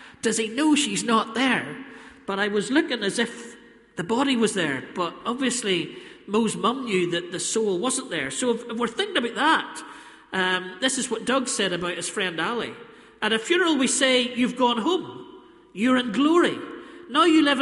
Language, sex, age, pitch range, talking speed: English, male, 40-59, 220-270 Hz, 190 wpm